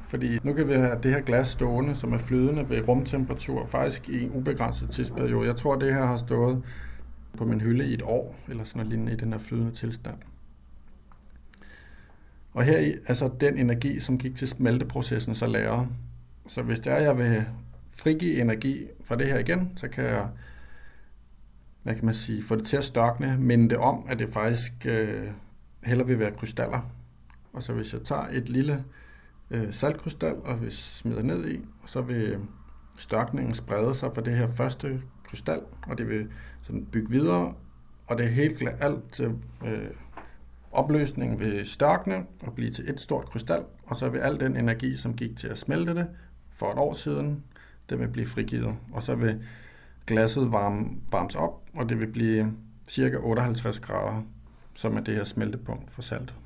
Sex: male